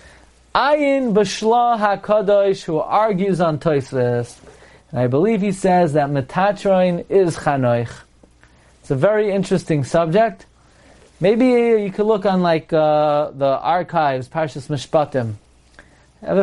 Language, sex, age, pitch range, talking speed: English, male, 30-49, 150-200 Hz, 120 wpm